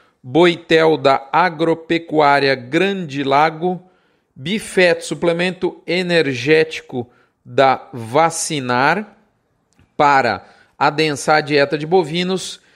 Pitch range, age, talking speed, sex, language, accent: 150-185 Hz, 40-59, 75 wpm, male, Portuguese, Brazilian